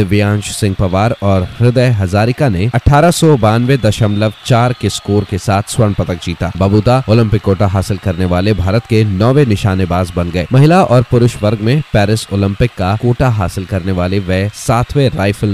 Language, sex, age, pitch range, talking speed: Hindi, male, 30-49, 100-125 Hz, 175 wpm